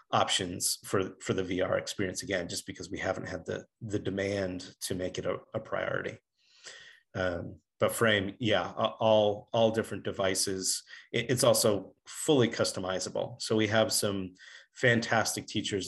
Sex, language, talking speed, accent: male, English, 150 wpm, American